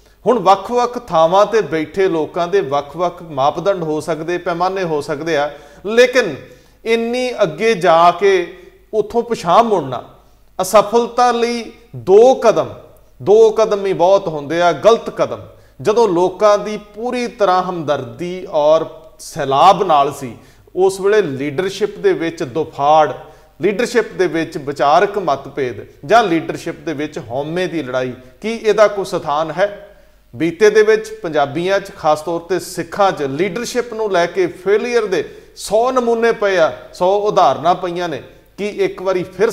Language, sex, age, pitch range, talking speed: Punjabi, male, 40-59, 160-215 Hz, 125 wpm